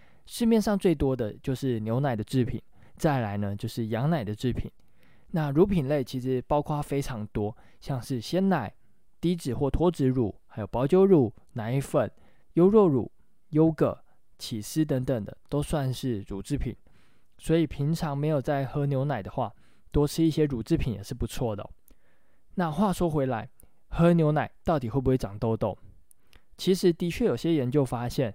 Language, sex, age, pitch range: Chinese, male, 20-39, 115-155 Hz